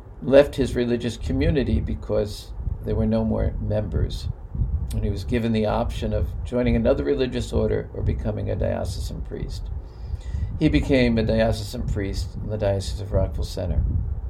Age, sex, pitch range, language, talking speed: 50-69, male, 90-120 Hz, English, 155 wpm